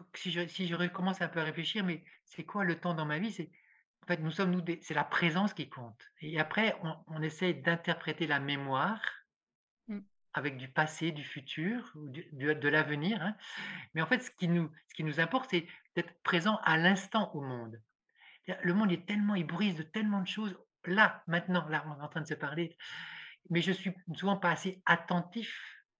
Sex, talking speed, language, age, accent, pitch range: male, 210 wpm, French, 50-69, French, 155-195 Hz